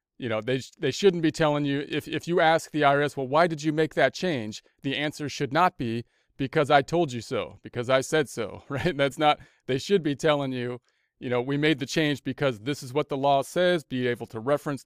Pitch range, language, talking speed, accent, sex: 120-150 Hz, English, 240 wpm, American, male